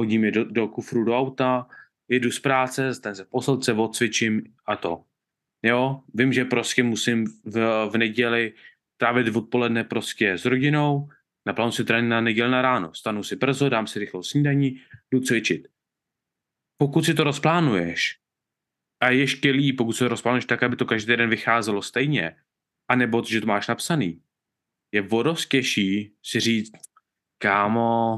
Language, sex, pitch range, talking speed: Czech, male, 110-130 Hz, 155 wpm